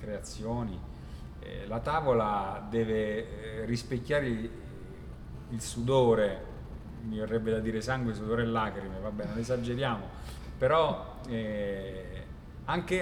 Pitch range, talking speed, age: 105-120 Hz, 105 wpm, 40-59